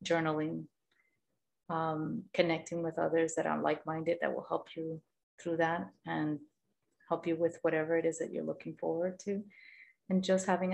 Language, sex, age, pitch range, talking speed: English, female, 30-49, 155-175 Hz, 160 wpm